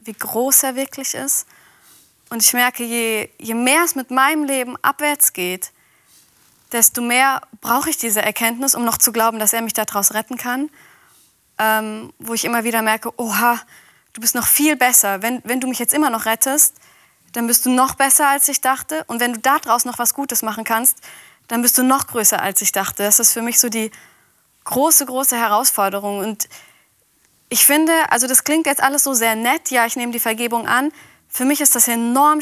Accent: German